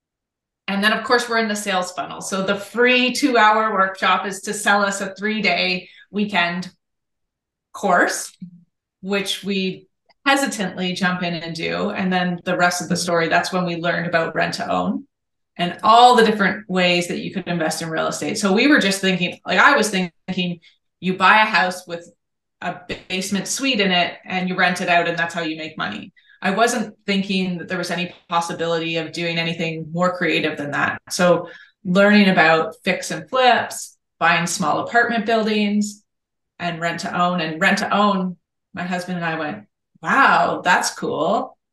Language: English